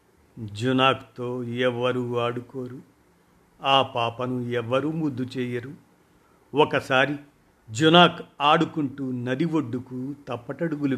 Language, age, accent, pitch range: Telugu, 50-69, native, 120-150 Hz